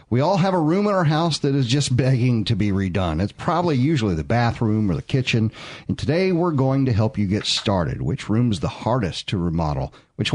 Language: English